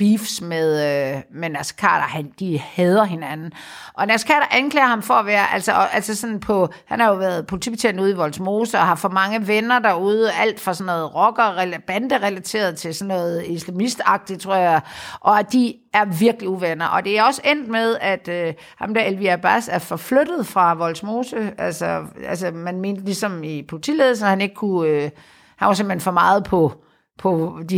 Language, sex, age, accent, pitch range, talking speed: Danish, female, 50-69, native, 175-230 Hz, 190 wpm